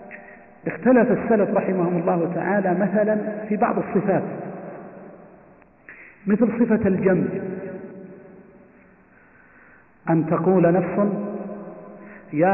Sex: male